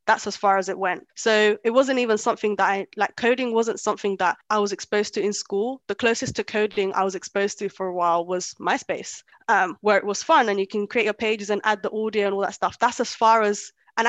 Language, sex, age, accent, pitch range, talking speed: English, female, 10-29, British, 195-230 Hz, 260 wpm